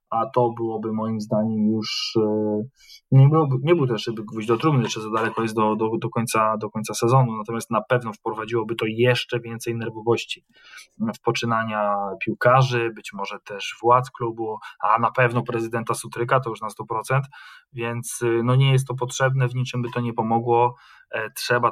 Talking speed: 175 wpm